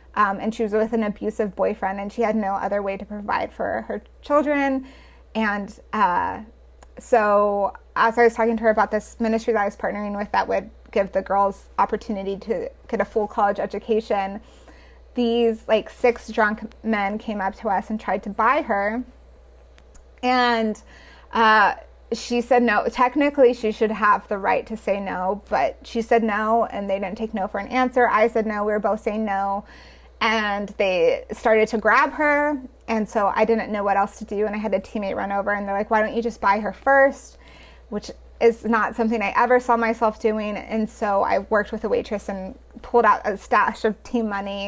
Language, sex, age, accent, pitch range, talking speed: English, female, 20-39, American, 205-240 Hz, 205 wpm